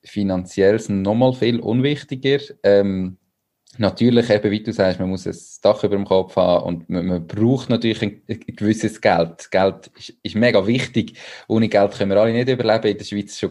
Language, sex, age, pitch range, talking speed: German, male, 20-39, 95-115 Hz, 190 wpm